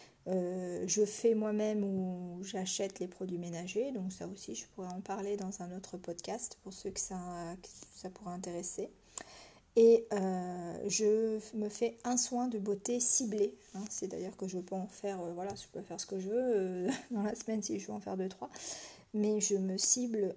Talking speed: 190 wpm